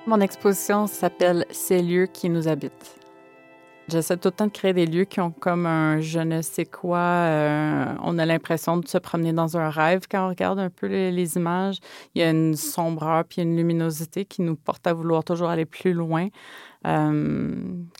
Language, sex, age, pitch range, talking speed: French, female, 30-49, 155-175 Hz, 195 wpm